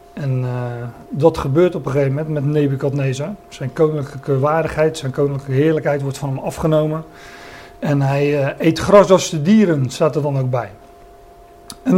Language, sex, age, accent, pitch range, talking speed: Dutch, male, 40-59, Dutch, 145-170 Hz, 170 wpm